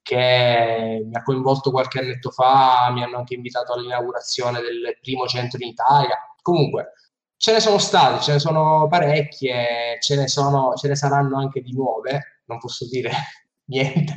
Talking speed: 155 wpm